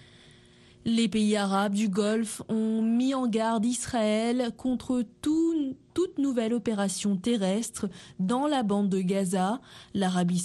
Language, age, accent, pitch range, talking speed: French, 20-39, French, 190-235 Hz, 125 wpm